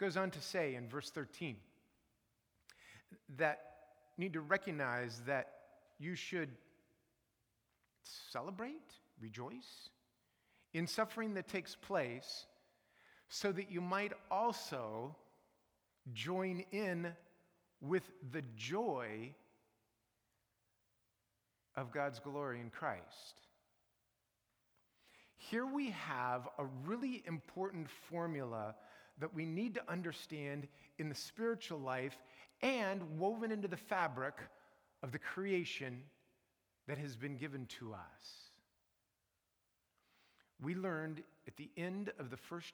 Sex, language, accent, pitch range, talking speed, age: male, English, American, 125-185 Hz, 105 wpm, 50-69